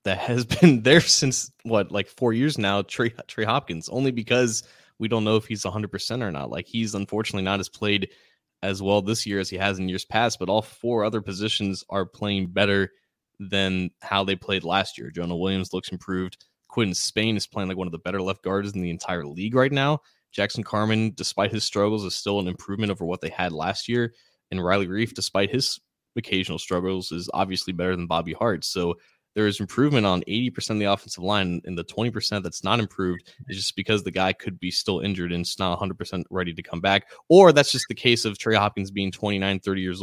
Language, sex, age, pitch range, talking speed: English, male, 20-39, 90-110 Hz, 225 wpm